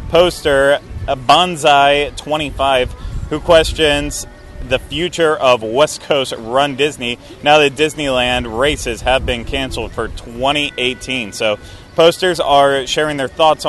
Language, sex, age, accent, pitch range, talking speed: English, male, 30-49, American, 125-145 Hz, 115 wpm